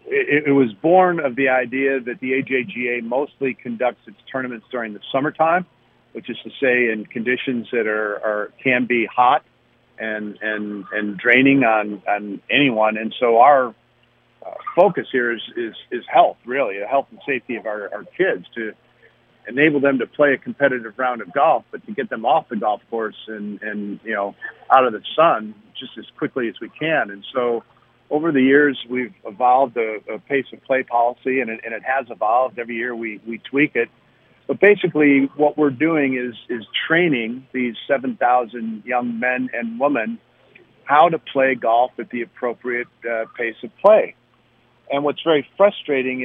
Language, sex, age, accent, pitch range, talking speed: English, male, 50-69, American, 115-140 Hz, 180 wpm